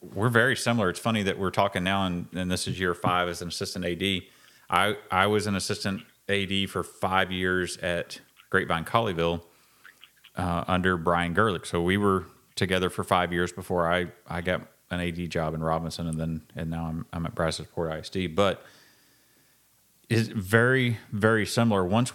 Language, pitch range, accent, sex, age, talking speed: English, 90-110 Hz, American, male, 30-49, 180 wpm